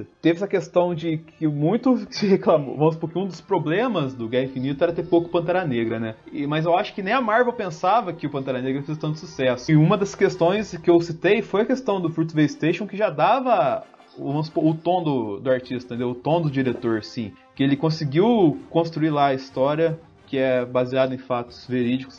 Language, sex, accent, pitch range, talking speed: Portuguese, male, Brazilian, 140-210 Hz, 215 wpm